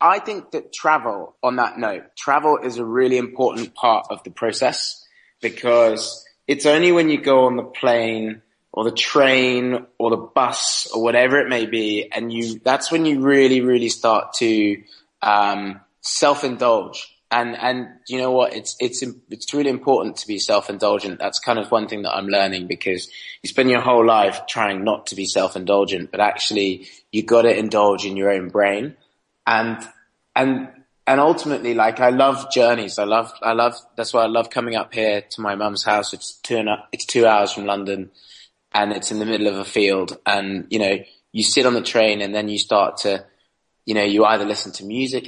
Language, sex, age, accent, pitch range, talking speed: English, male, 20-39, British, 100-125 Hz, 195 wpm